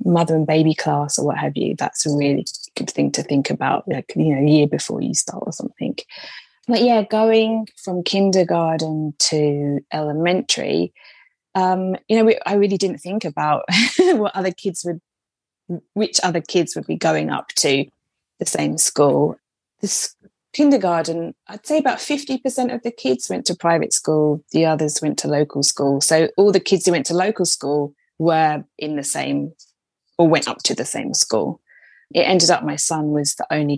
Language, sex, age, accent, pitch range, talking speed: English, female, 20-39, British, 150-195 Hz, 185 wpm